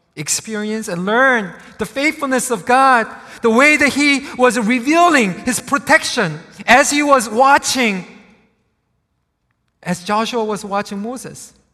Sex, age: male, 40-59